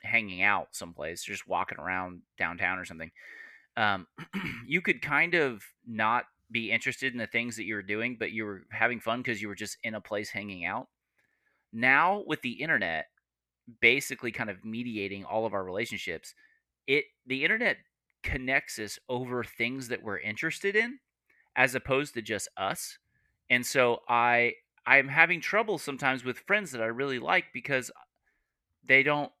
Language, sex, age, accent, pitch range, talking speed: English, male, 30-49, American, 110-135 Hz, 165 wpm